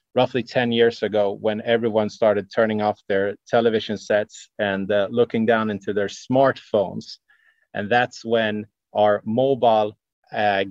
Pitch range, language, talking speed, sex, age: 105-125 Hz, English, 140 wpm, male, 30-49